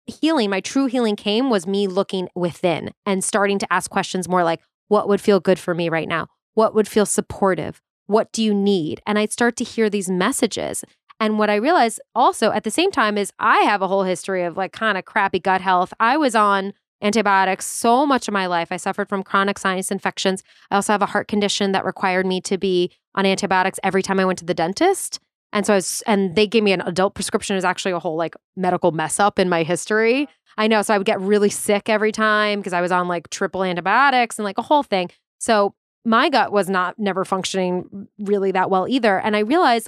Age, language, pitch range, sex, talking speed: 20-39, English, 185-220 Hz, female, 230 wpm